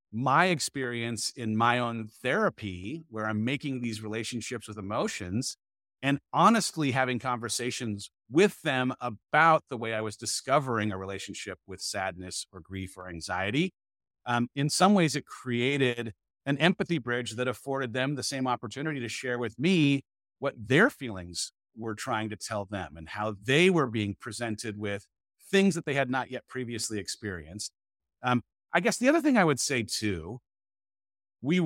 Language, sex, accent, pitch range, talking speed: English, male, American, 110-150 Hz, 165 wpm